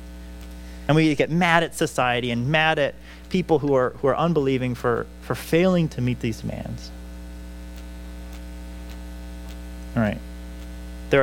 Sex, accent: male, American